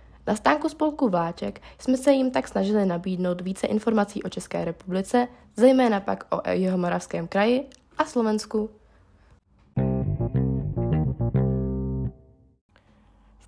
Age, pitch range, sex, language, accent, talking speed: 20-39, 170-245 Hz, female, Czech, native, 105 wpm